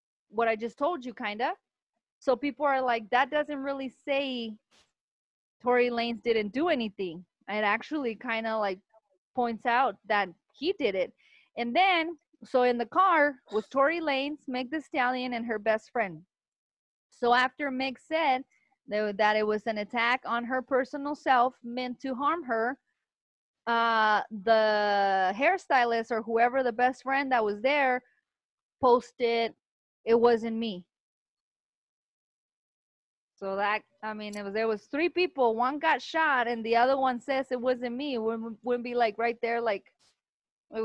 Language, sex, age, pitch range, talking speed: English, female, 30-49, 215-265 Hz, 160 wpm